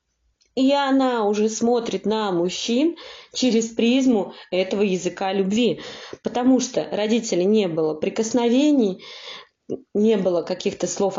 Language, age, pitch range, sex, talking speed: Russian, 20-39, 170-225 Hz, female, 115 wpm